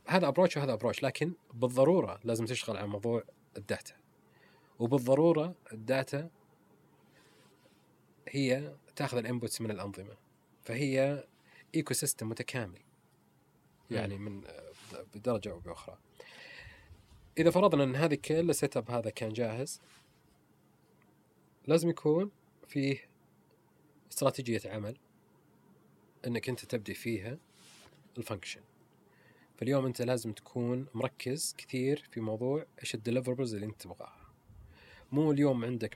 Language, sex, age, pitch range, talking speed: Arabic, male, 30-49, 110-140 Hz, 105 wpm